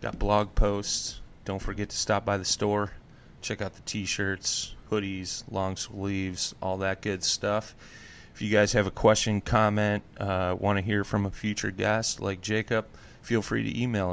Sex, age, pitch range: male, 30-49, 95-110 Hz